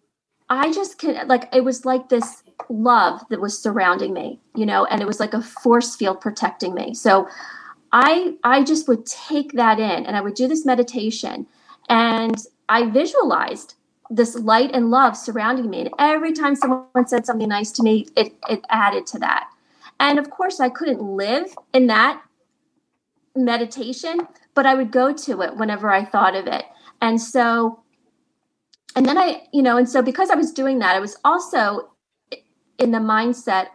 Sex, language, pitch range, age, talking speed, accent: female, English, 220-275 Hz, 30-49, 180 wpm, American